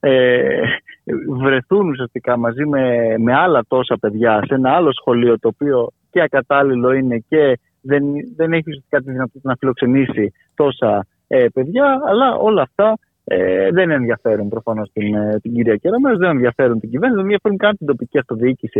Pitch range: 125-180 Hz